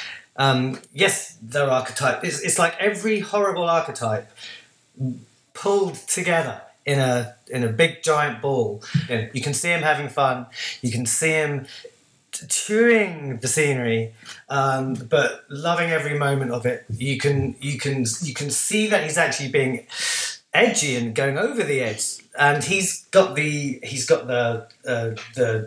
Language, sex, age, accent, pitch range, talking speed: English, male, 30-49, British, 120-150 Hz, 155 wpm